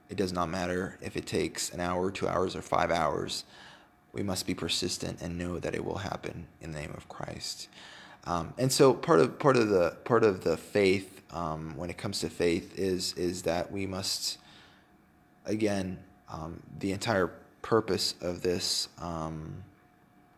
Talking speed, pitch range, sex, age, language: 175 wpm, 90-105 Hz, male, 20-39, English